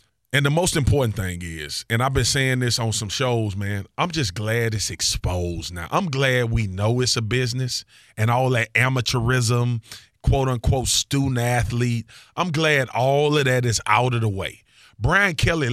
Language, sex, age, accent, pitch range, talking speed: English, male, 30-49, American, 110-140 Hz, 175 wpm